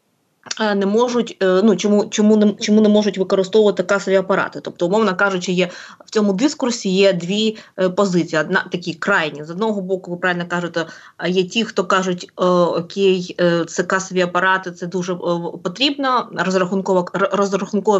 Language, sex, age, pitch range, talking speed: Ukrainian, female, 20-39, 185-215 Hz, 155 wpm